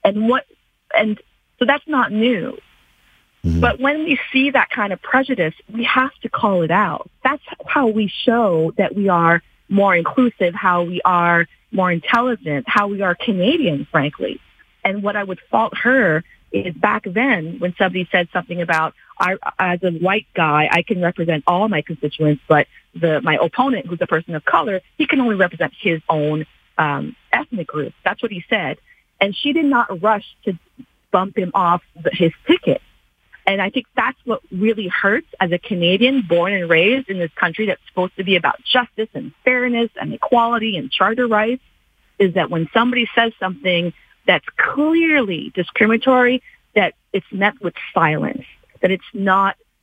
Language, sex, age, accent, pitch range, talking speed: English, female, 30-49, American, 170-235 Hz, 175 wpm